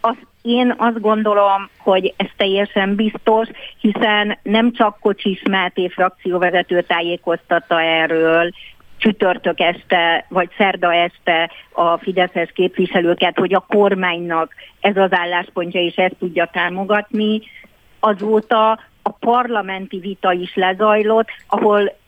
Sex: female